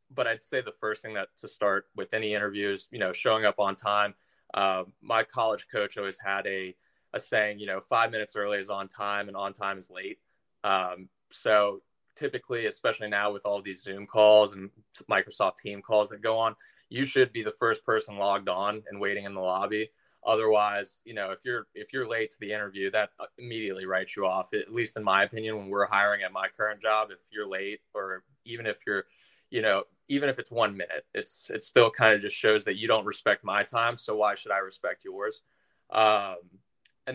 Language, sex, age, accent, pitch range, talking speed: English, male, 20-39, American, 100-115 Hz, 215 wpm